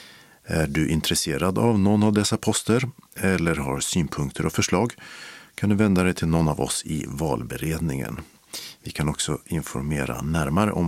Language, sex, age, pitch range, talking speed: Swedish, male, 50-69, 80-110 Hz, 160 wpm